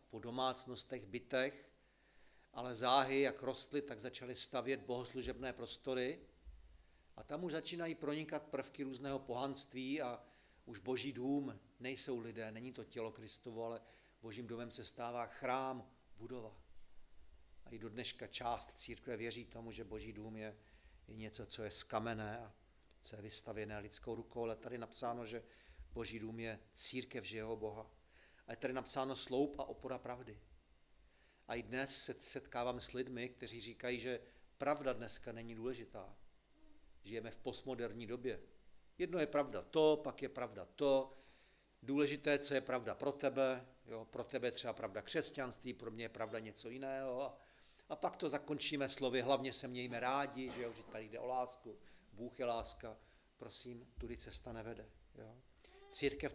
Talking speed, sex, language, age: 155 wpm, male, Czech, 40-59